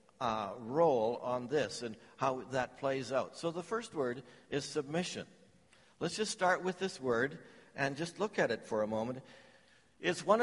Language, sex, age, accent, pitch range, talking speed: English, male, 60-79, American, 135-175 Hz, 180 wpm